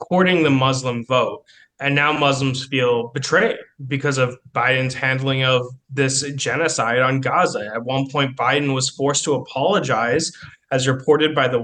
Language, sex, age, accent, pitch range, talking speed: English, male, 20-39, American, 125-155 Hz, 155 wpm